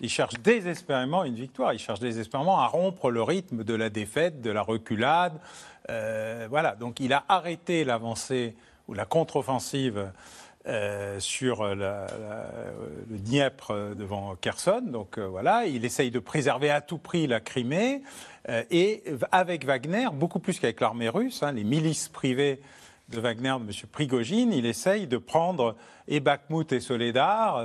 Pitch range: 130-185 Hz